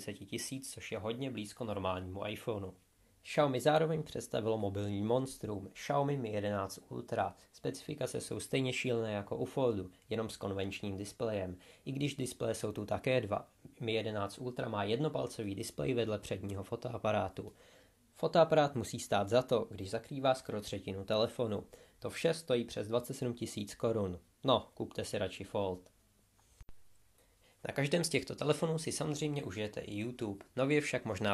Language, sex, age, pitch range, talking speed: Czech, male, 20-39, 100-130 Hz, 150 wpm